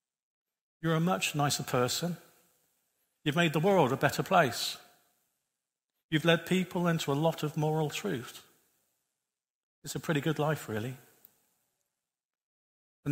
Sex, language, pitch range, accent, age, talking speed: male, English, 125-160 Hz, British, 50-69, 130 wpm